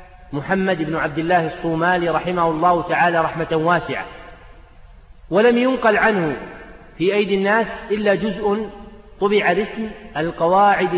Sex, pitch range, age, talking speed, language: male, 165-205 Hz, 40-59, 115 wpm, Arabic